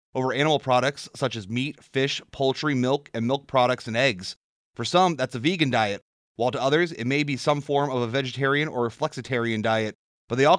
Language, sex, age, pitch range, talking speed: English, male, 30-49, 125-155 Hz, 215 wpm